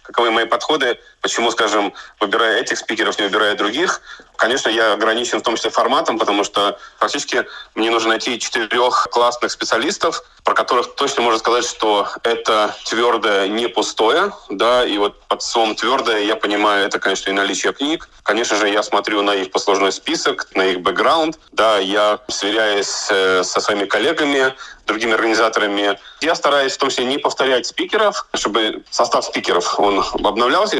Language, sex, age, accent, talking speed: Russian, male, 30-49, native, 160 wpm